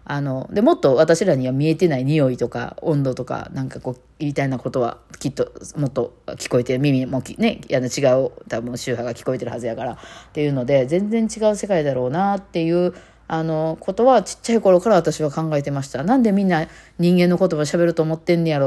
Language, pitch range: Japanese, 130-185 Hz